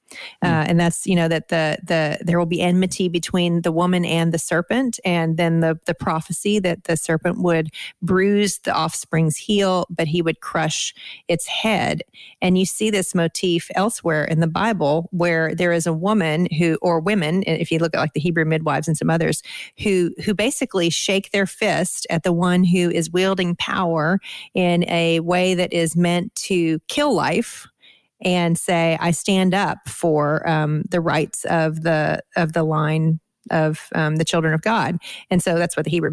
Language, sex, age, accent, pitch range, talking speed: English, female, 40-59, American, 165-185 Hz, 190 wpm